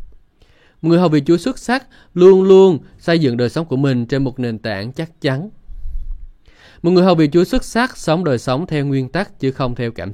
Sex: male